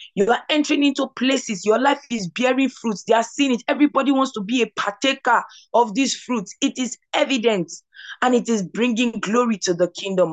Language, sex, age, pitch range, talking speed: English, female, 20-39, 150-210 Hz, 200 wpm